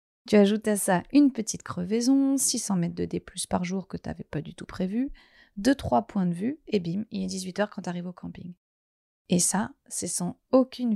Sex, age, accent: female, 30-49, French